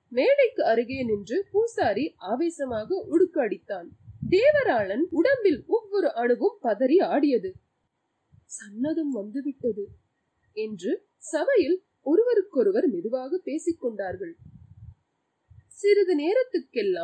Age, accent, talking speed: 30-49, Indian, 50 wpm